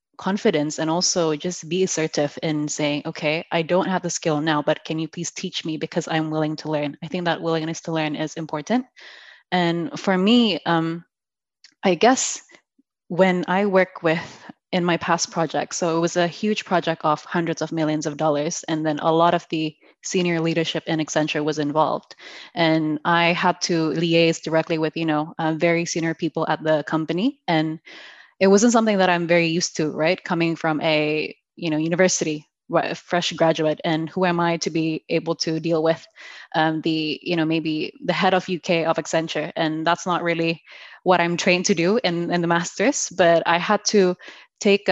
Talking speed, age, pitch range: 195 wpm, 20-39, 160-180 Hz